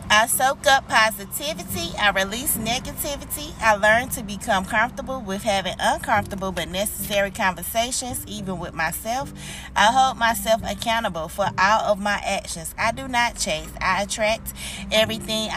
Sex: female